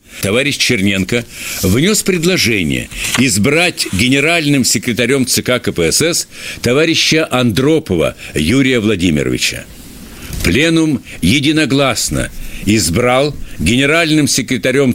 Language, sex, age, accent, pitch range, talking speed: Russian, male, 60-79, native, 105-135 Hz, 70 wpm